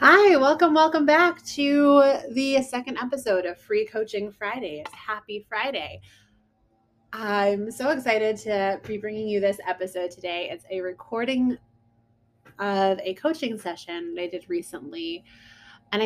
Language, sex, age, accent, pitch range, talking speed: English, female, 20-39, American, 185-245 Hz, 135 wpm